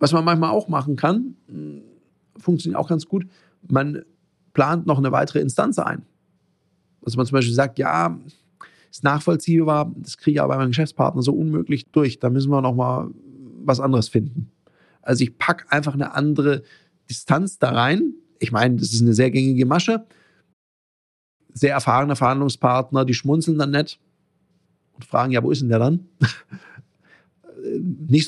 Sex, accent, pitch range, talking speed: male, German, 125-165 Hz, 160 wpm